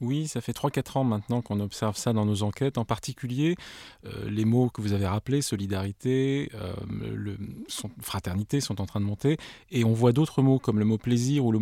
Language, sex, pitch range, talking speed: French, male, 105-130 Hz, 215 wpm